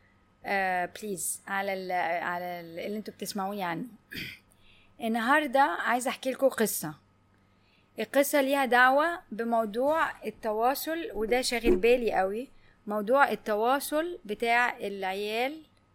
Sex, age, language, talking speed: female, 20-39, Arabic, 105 wpm